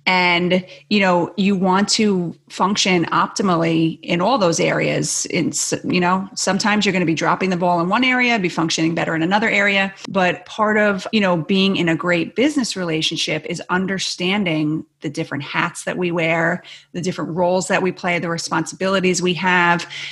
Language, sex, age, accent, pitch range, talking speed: English, female, 30-49, American, 170-200 Hz, 180 wpm